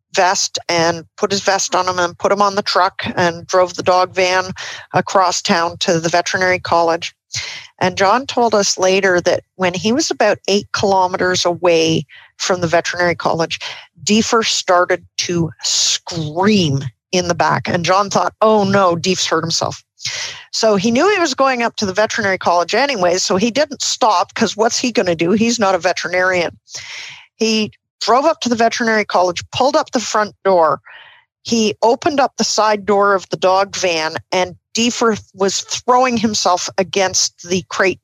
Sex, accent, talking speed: female, American, 175 wpm